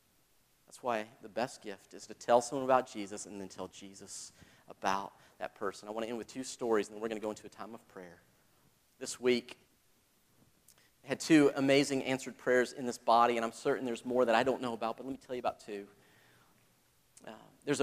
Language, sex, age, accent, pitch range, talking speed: English, male, 40-59, American, 120-145 Hz, 220 wpm